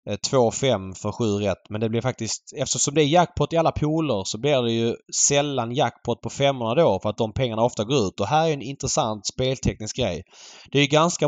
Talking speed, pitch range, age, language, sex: 225 wpm, 105-135 Hz, 20-39, Swedish, male